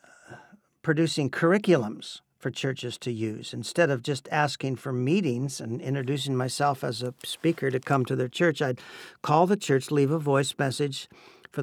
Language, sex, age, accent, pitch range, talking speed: English, male, 50-69, American, 125-150 Hz, 165 wpm